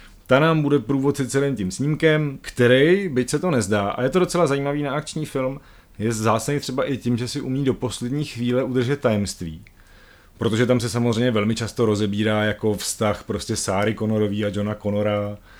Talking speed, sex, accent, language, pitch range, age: 185 wpm, male, native, Czech, 105-140 Hz, 30-49